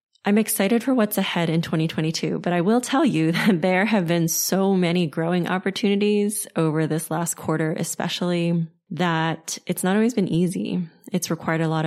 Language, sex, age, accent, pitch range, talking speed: English, female, 20-39, American, 160-185 Hz, 175 wpm